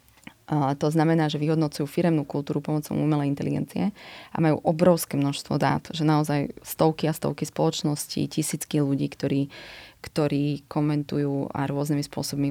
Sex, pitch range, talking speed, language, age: female, 145-155 Hz, 135 wpm, Slovak, 20-39